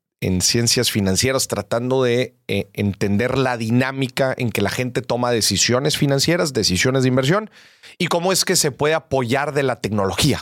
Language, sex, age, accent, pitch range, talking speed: Spanish, male, 40-59, Mexican, 110-155 Hz, 160 wpm